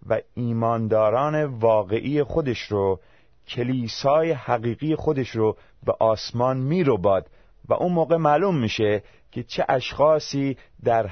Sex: male